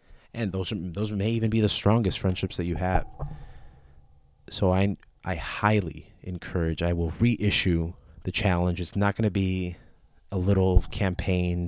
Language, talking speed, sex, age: English, 160 wpm, male, 30-49